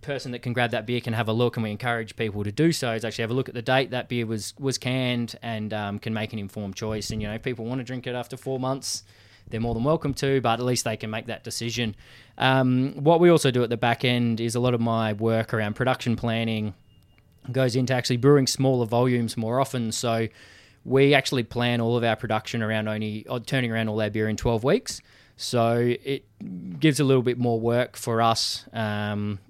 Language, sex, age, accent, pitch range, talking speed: English, male, 20-39, Australian, 110-130 Hz, 240 wpm